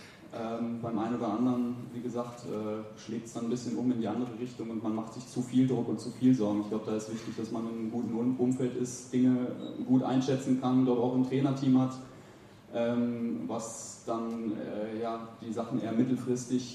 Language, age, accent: German, 20-39, German